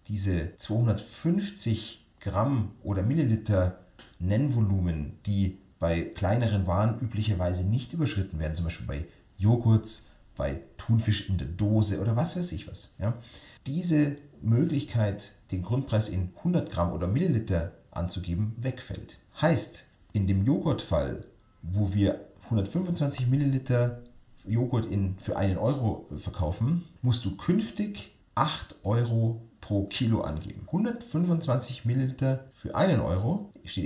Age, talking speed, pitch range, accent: 40-59, 120 wpm, 95-130 Hz, German